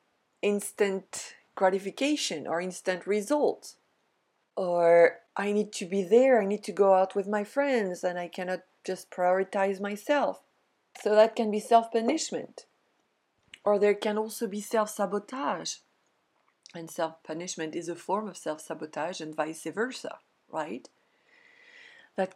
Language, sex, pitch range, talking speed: English, female, 175-225 Hz, 130 wpm